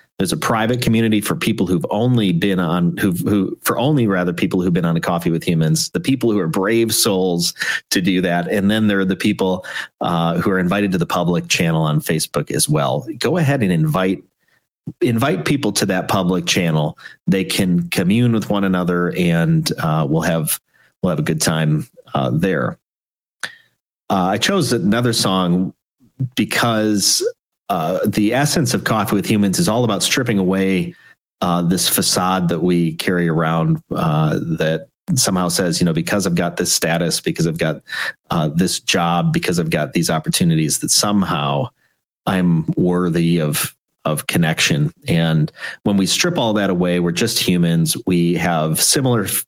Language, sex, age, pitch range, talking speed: English, male, 40-59, 85-115 Hz, 175 wpm